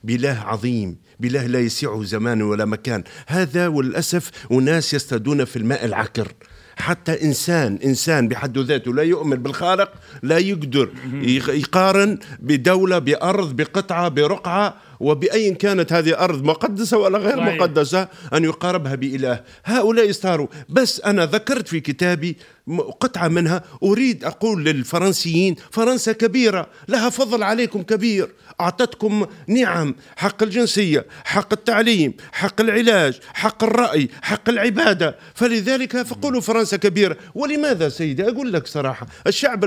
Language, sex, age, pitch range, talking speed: Arabic, male, 50-69, 150-220 Hz, 125 wpm